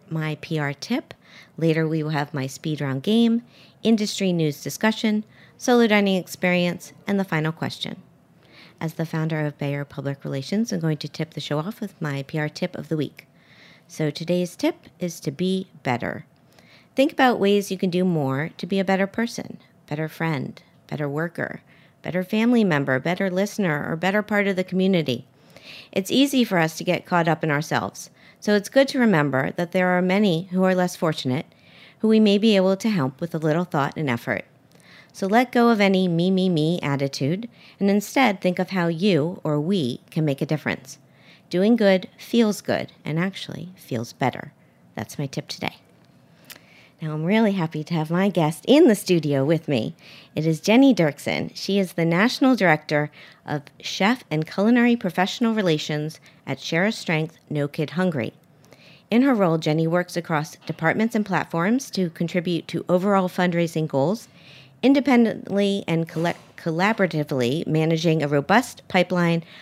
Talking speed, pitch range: 175 wpm, 150-195 Hz